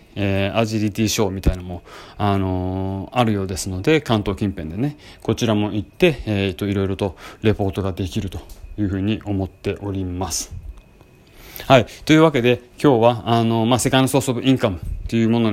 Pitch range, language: 95-120 Hz, Japanese